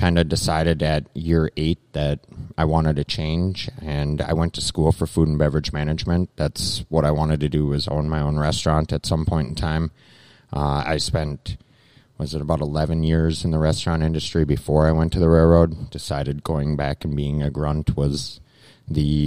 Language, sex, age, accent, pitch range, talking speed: English, male, 30-49, American, 75-85 Hz, 200 wpm